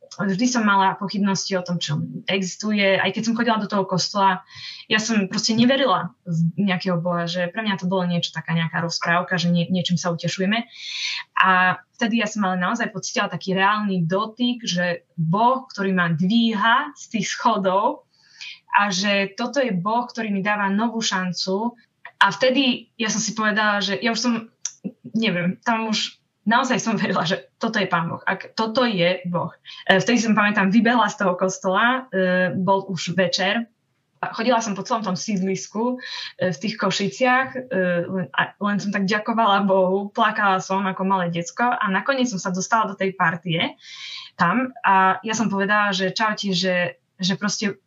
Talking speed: 180 wpm